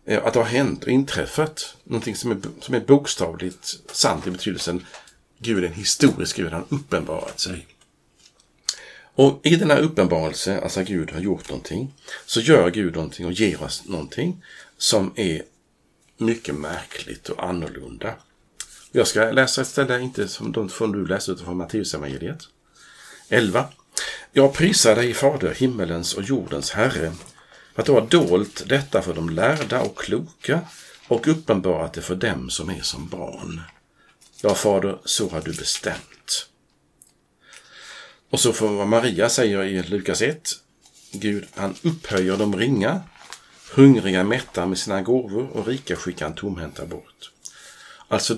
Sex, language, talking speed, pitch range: male, Swedish, 150 wpm, 90-130 Hz